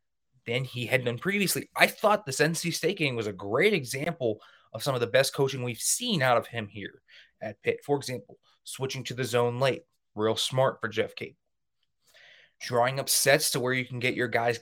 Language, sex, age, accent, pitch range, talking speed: English, male, 20-39, American, 120-145 Hz, 210 wpm